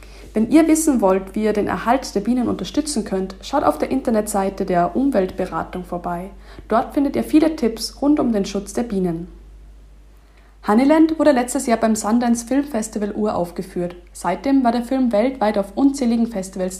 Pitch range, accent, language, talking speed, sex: 195-255 Hz, German, German, 170 wpm, female